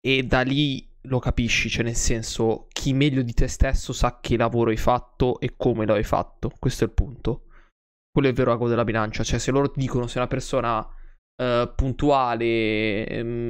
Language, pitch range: Italian, 115-135 Hz